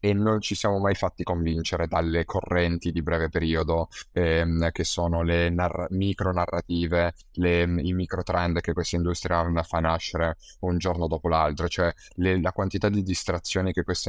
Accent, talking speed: native, 170 wpm